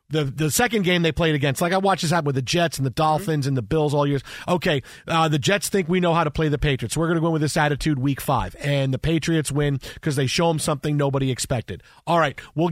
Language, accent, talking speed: English, American, 285 wpm